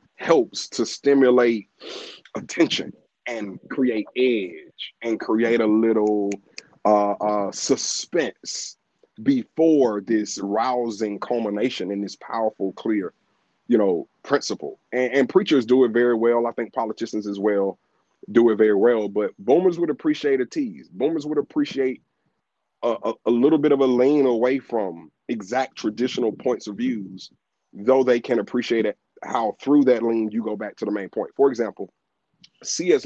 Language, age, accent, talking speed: English, 30-49, American, 150 wpm